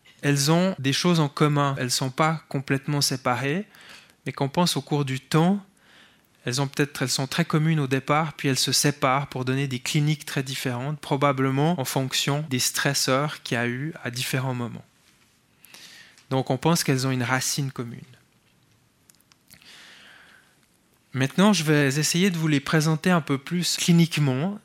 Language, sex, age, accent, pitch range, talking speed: French, male, 20-39, French, 130-150 Hz, 165 wpm